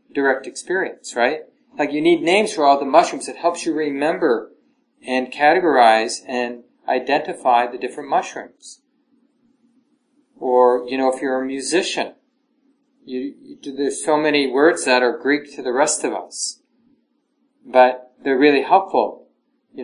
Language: English